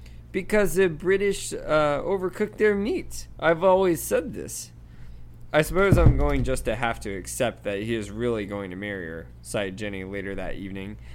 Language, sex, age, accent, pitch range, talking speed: English, male, 20-39, American, 95-125 Hz, 180 wpm